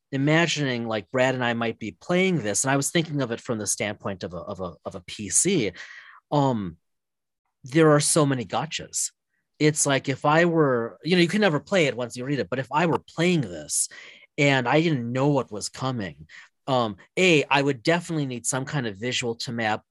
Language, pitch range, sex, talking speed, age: English, 115-150 Hz, male, 215 wpm, 30-49